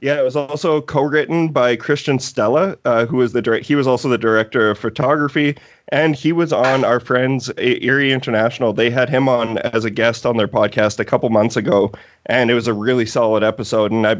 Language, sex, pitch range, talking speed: English, male, 110-130 Hz, 220 wpm